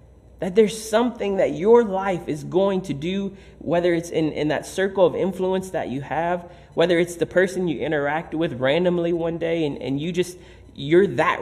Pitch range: 120-165 Hz